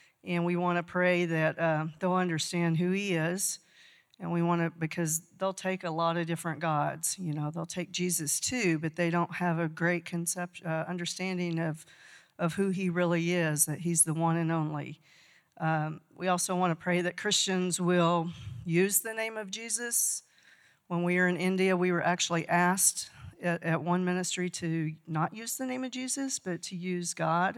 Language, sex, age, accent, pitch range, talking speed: English, female, 50-69, American, 165-185 Hz, 190 wpm